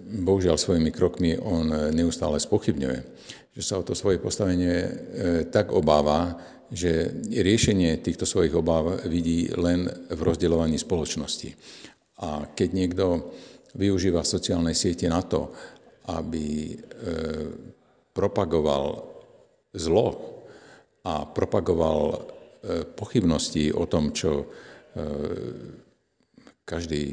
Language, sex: Slovak, male